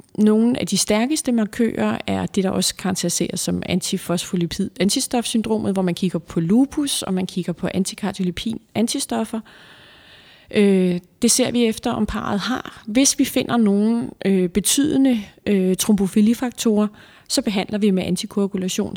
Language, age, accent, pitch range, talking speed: Danish, 30-49, native, 190-230 Hz, 125 wpm